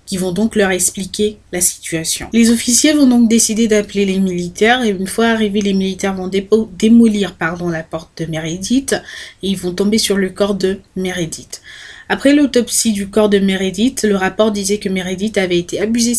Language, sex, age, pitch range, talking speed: French, female, 20-39, 175-215 Hz, 195 wpm